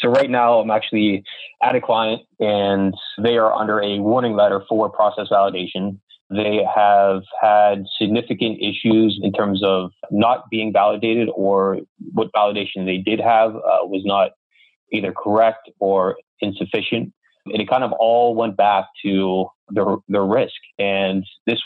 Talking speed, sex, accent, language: 150 wpm, male, American, English